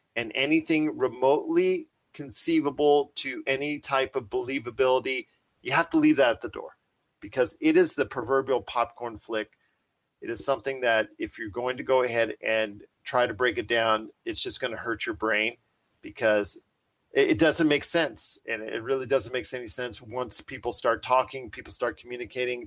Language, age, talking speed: English, 40-59, 175 wpm